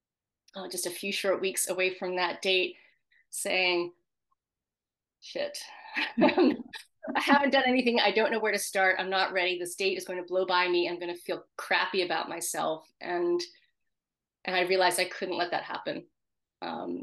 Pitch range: 175-210 Hz